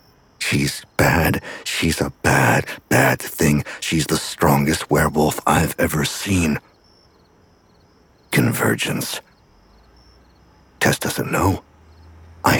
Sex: male